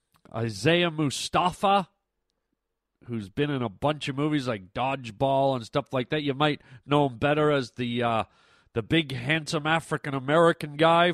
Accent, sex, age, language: American, male, 40-59, English